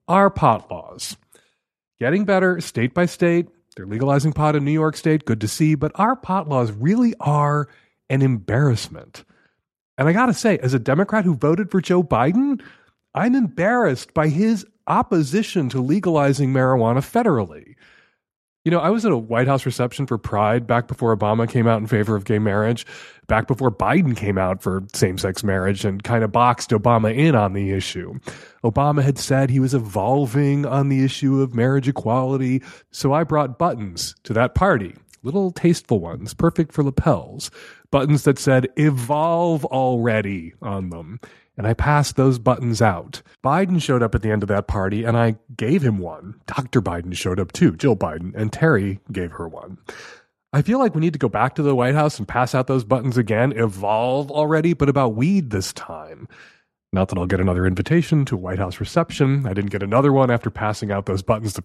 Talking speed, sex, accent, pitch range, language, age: 190 wpm, male, American, 110-150 Hz, English, 30-49